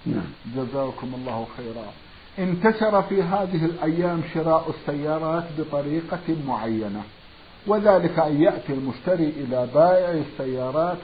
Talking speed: 100 wpm